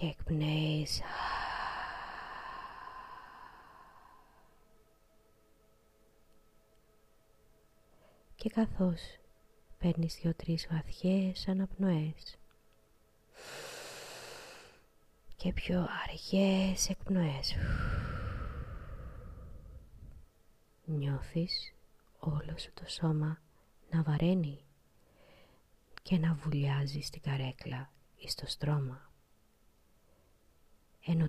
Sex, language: female, Greek